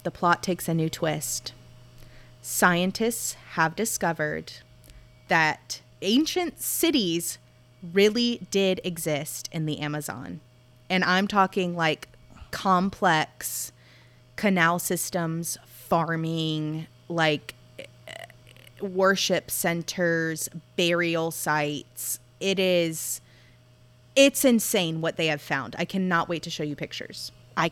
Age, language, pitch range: 20-39, English, 145-205 Hz